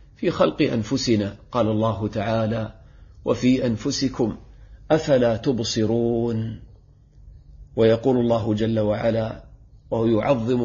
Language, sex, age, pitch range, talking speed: Arabic, male, 40-59, 110-130 Hz, 90 wpm